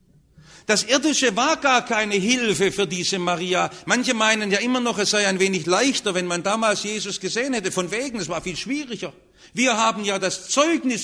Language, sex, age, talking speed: English, male, 60-79, 195 wpm